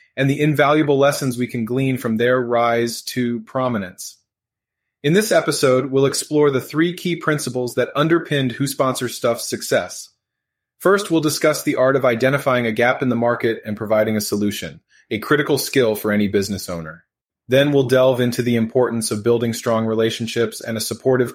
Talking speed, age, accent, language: 175 wpm, 30-49, American, English